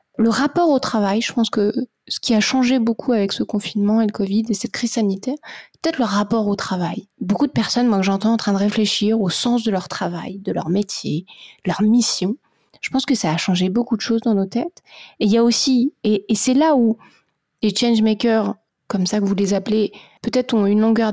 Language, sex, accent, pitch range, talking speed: French, female, French, 195-235 Hz, 235 wpm